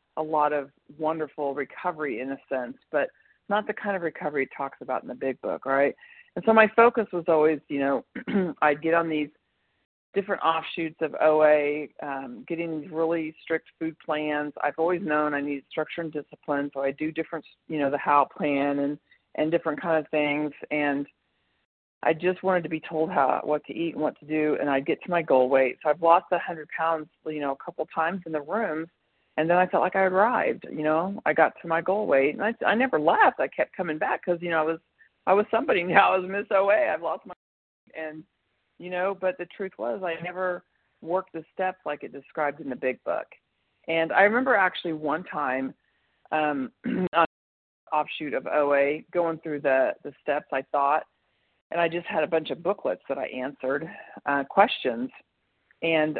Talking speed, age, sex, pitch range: 205 wpm, 40-59, female, 145-175 Hz